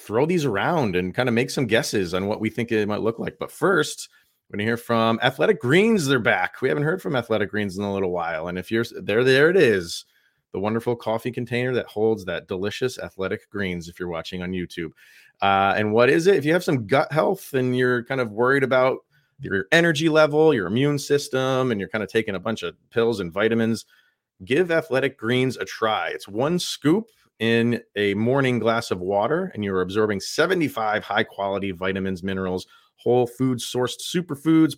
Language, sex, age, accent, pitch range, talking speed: English, male, 30-49, American, 100-130 Hz, 205 wpm